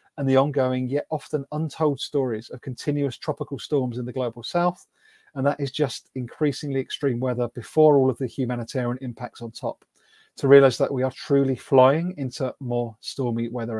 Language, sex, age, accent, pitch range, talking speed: English, male, 40-59, British, 125-150 Hz, 180 wpm